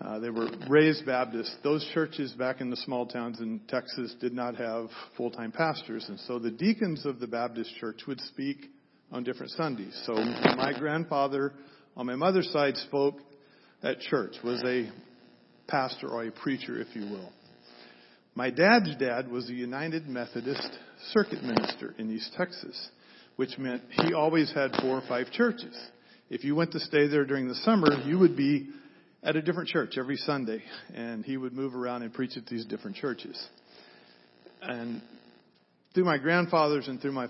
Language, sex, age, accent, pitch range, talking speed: English, male, 50-69, American, 115-150 Hz, 175 wpm